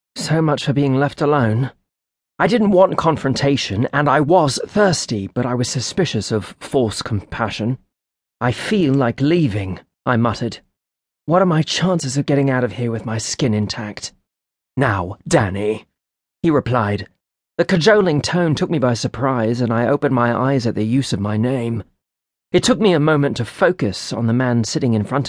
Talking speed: 180 wpm